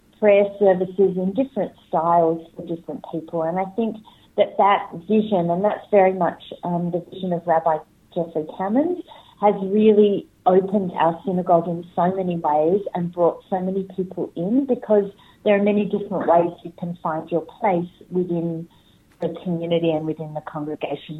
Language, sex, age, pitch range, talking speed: Hebrew, female, 40-59, 170-200 Hz, 165 wpm